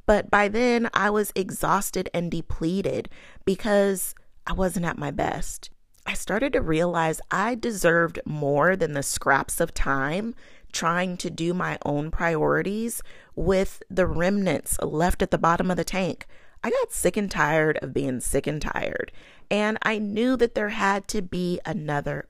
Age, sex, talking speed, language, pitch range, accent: 30-49, female, 165 wpm, English, 165-220 Hz, American